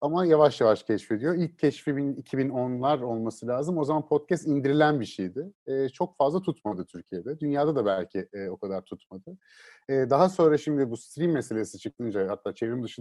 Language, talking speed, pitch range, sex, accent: Turkish, 175 wpm, 115-170 Hz, male, native